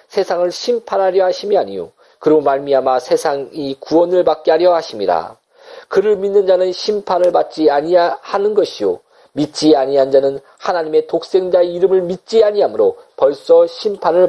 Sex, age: male, 40-59